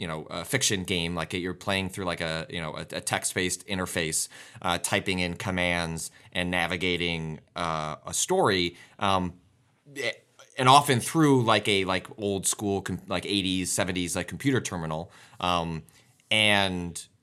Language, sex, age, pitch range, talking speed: English, male, 30-49, 90-115 Hz, 150 wpm